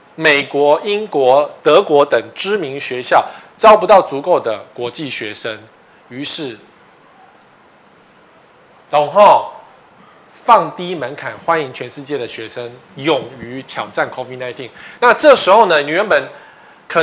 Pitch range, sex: 125-190 Hz, male